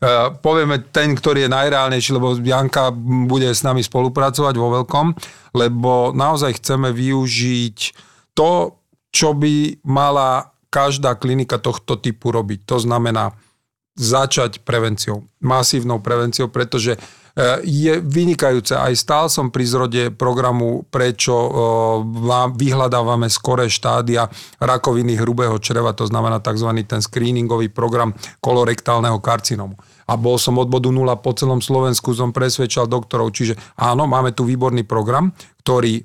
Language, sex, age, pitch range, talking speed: Slovak, male, 40-59, 120-135 Hz, 125 wpm